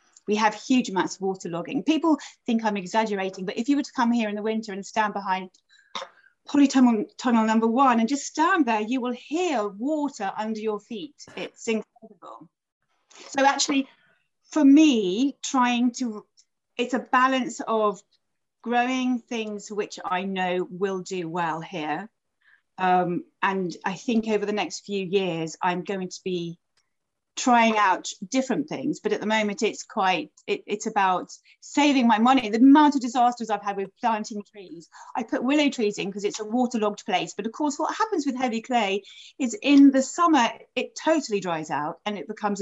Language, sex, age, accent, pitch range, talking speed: English, female, 30-49, British, 200-260 Hz, 175 wpm